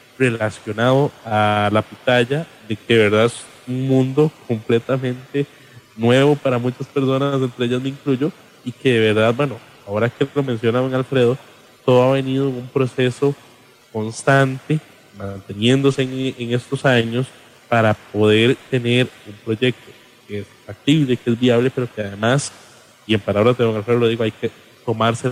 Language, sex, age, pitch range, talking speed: English, male, 20-39, 110-135 Hz, 165 wpm